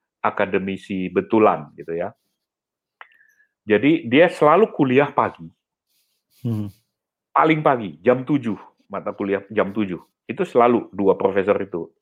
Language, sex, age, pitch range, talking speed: Indonesian, male, 40-59, 105-170 Hz, 110 wpm